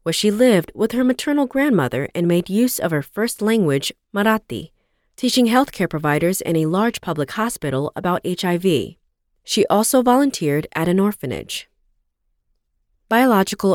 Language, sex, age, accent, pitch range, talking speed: English, female, 30-49, American, 165-245 Hz, 140 wpm